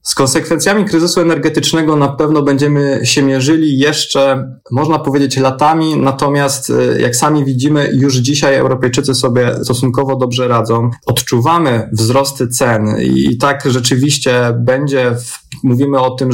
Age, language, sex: 20-39, Polish, male